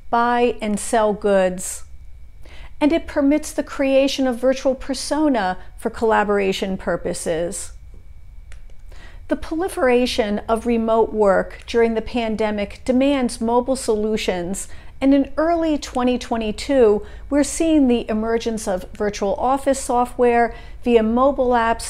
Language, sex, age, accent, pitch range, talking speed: English, female, 50-69, American, 210-265 Hz, 110 wpm